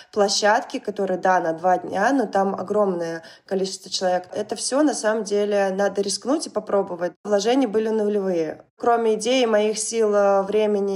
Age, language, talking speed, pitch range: 20-39, Russian, 155 wpm, 195-235 Hz